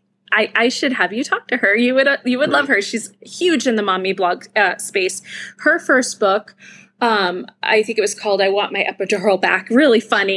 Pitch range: 200-250 Hz